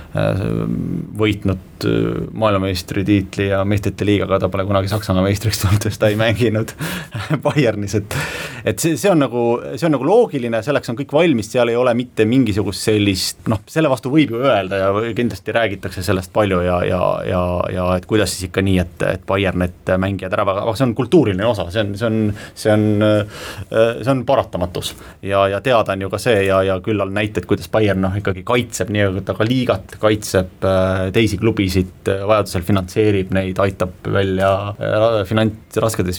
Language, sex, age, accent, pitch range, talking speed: English, male, 30-49, Finnish, 95-115 Hz, 180 wpm